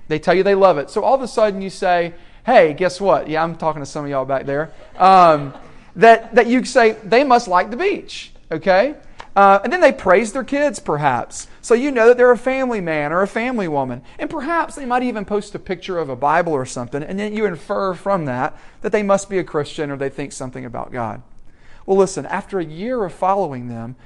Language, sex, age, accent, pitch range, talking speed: English, male, 40-59, American, 140-220 Hz, 235 wpm